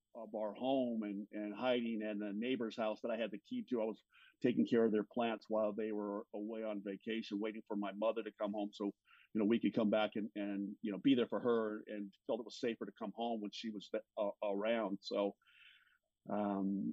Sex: male